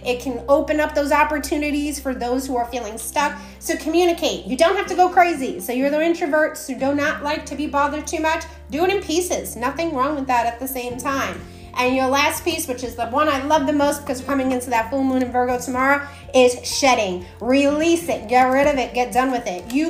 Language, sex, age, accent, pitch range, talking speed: English, female, 30-49, American, 250-295 Hz, 240 wpm